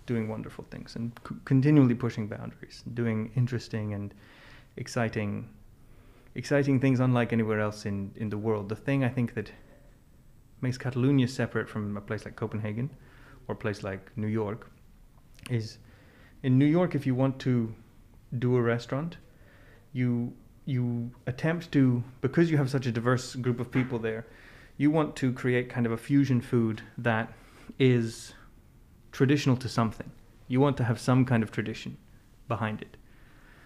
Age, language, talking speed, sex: 30-49, English, 160 wpm, male